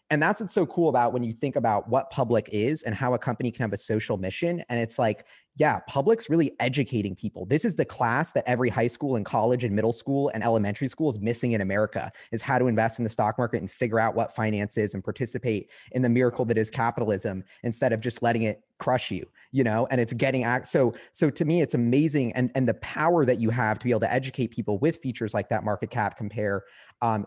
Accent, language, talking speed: American, English, 245 wpm